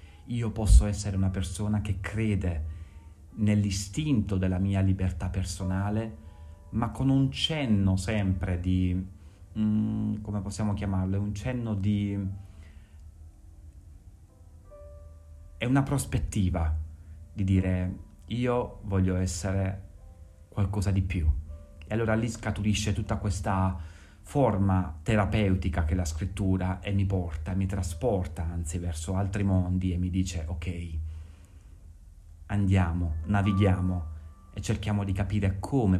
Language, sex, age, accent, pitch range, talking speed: Italian, male, 30-49, native, 85-100 Hz, 110 wpm